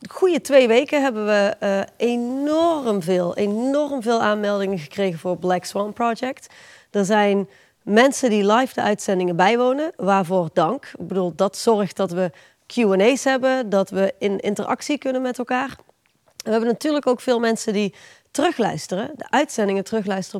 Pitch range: 195-260 Hz